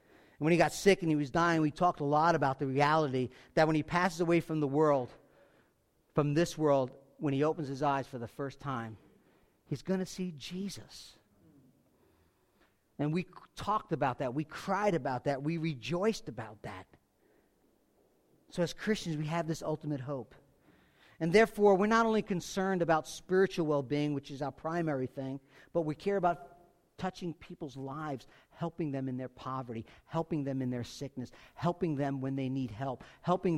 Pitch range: 130-170 Hz